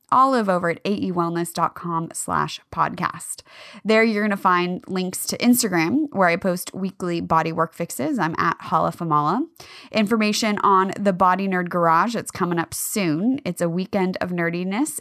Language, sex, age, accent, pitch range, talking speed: English, female, 20-39, American, 170-230 Hz, 155 wpm